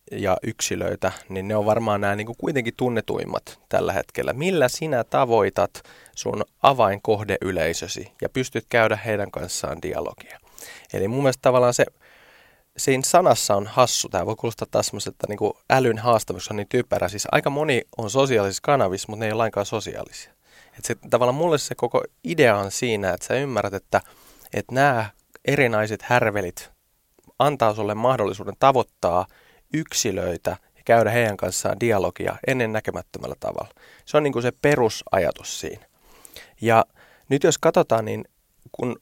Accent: native